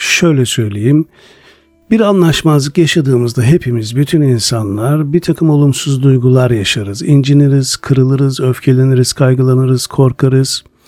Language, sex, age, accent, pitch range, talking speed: Turkish, male, 50-69, native, 125-155 Hz, 100 wpm